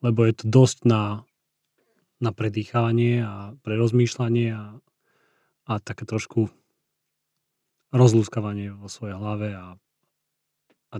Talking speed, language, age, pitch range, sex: 105 wpm, Slovak, 30-49, 105-120 Hz, male